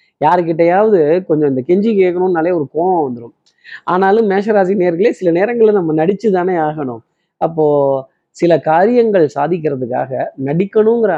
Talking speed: 115 wpm